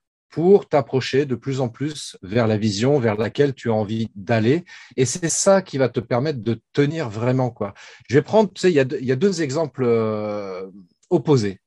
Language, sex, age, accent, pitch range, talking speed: French, male, 40-59, French, 115-155 Hz, 195 wpm